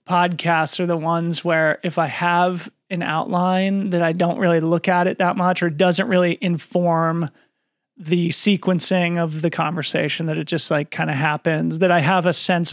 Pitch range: 160-200 Hz